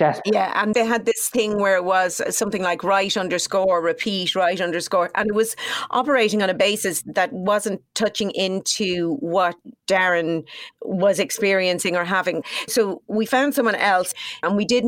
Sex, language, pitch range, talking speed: female, English, 180-230 Hz, 165 wpm